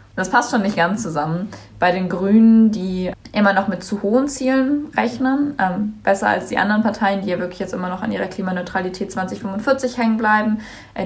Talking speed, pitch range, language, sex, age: 195 wpm, 180-215 Hz, German, female, 20-39